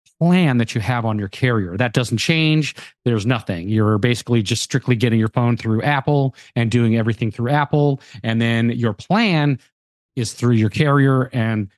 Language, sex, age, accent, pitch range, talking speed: English, male, 30-49, American, 115-140 Hz, 180 wpm